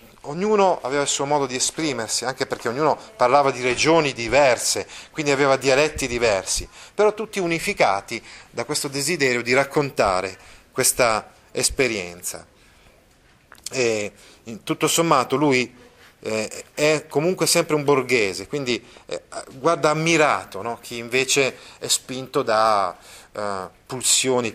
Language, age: Italian, 30-49